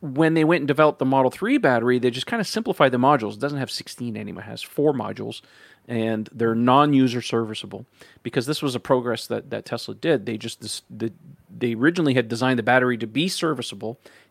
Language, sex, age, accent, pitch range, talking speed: English, male, 40-59, American, 115-140 Hz, 215 wpm